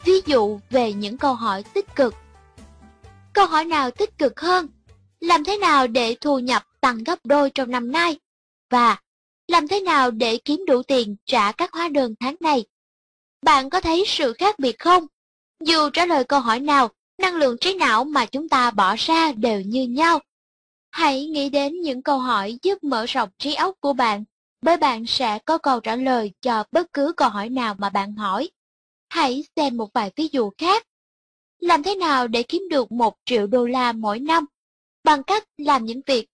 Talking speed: 195 wpm